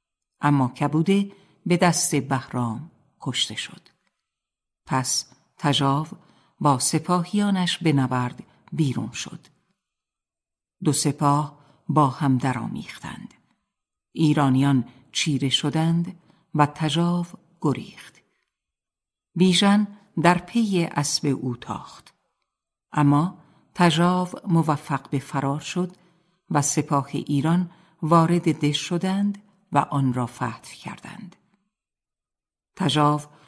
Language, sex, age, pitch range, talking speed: Persian, female, 50-69, 140-180 Hz, 90 wpm